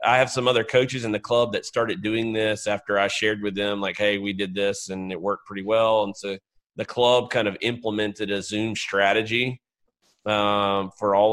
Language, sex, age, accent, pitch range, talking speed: English, male, 30-49, American, 100-110 Hz, 210 wpm